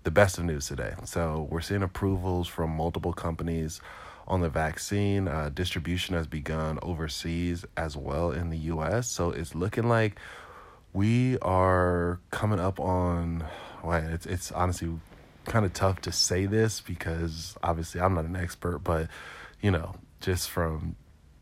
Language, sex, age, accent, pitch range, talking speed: English, male, 20-39, American, 80-95 Hz, 155 wpm